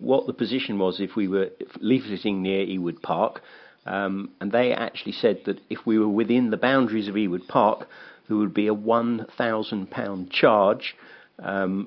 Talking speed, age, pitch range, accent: 175 wpm, 50-69, 95-110 Hz, British